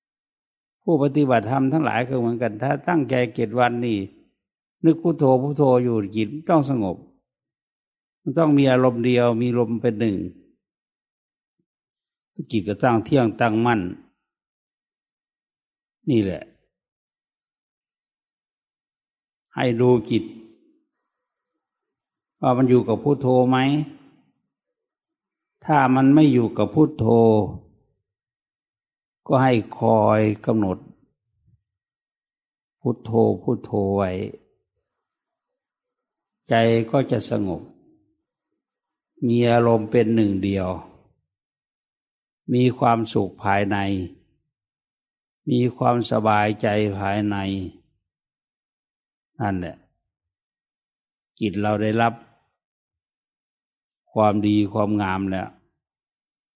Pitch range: 105-130 Hz